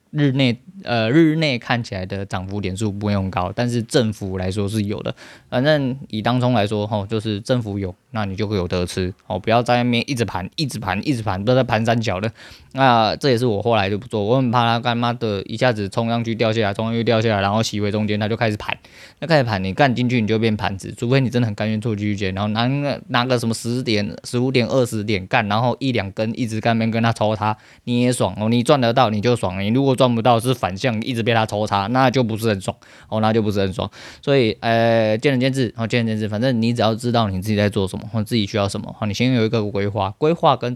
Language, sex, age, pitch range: Chinese, male, 20-39, 105-120 Hz